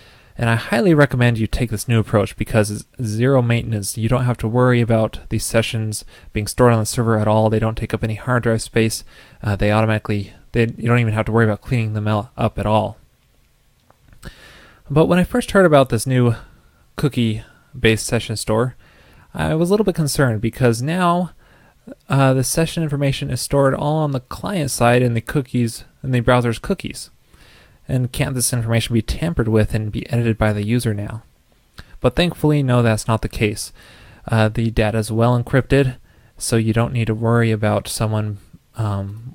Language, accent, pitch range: English, American, 110-130 Hz